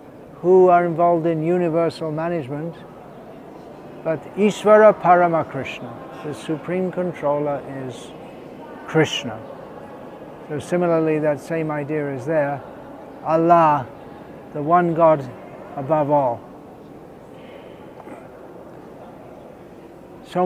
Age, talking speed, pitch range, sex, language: 60-79, 80 wpm, 155-180 Hz, male, English